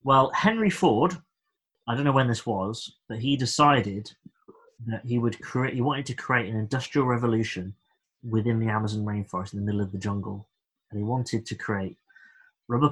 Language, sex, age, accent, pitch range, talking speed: English, male, 20-39, British, 105-140 Hz, 180 wpm